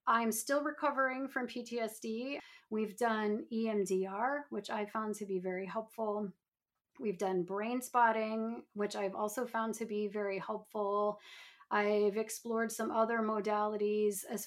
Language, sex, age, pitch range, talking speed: English, female, 30-49, 200-235 Hz, 135 wpm